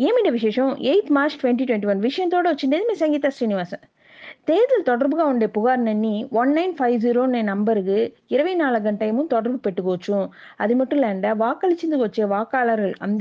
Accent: native